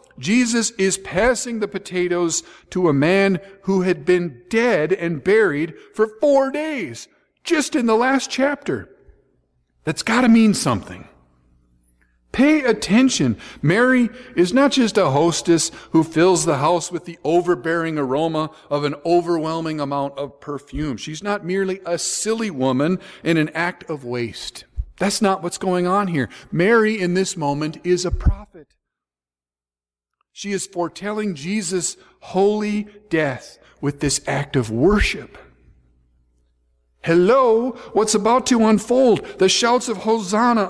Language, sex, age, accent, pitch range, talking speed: English, male, 50-69, American, 155-220 Hz, 135 wpm